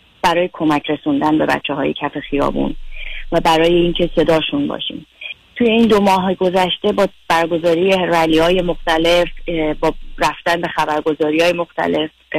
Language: Persian